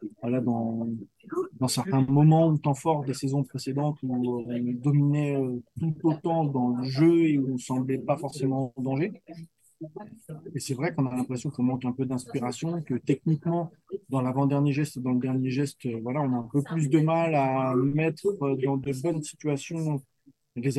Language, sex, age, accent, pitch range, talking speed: French, male, 20-39, French, 130-155 Hz, 190 wpm